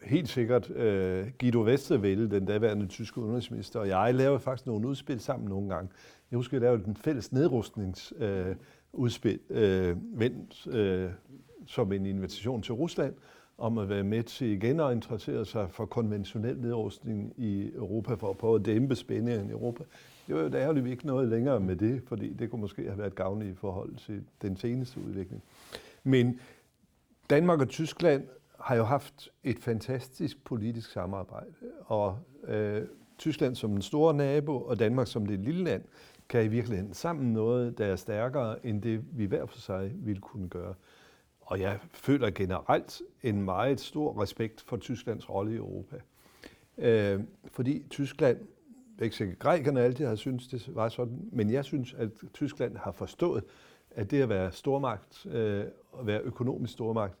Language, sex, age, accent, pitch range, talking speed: Danish, male, 60-79, native, 105-130 Hz, 170 wpm